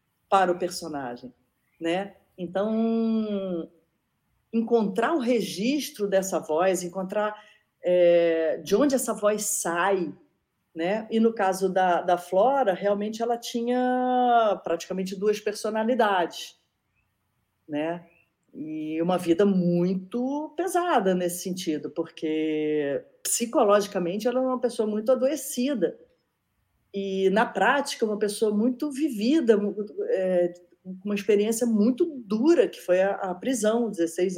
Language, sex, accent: Portuguese, female, Brazilian